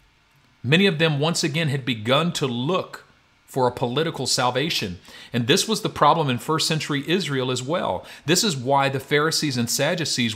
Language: English